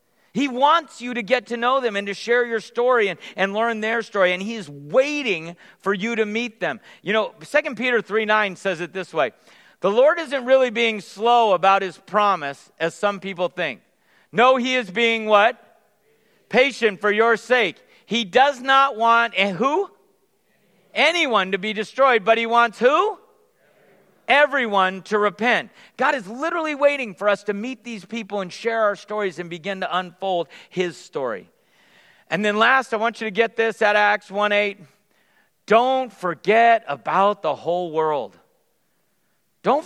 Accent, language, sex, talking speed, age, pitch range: American, English, male, 170 wpm, 50-69, 200-255 Hz